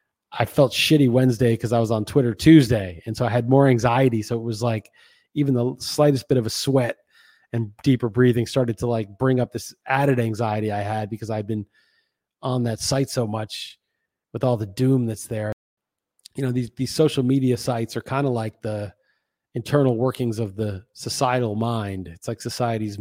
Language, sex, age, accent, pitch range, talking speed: English, male, 30-49, American, 110-125 Hz, 195 wpm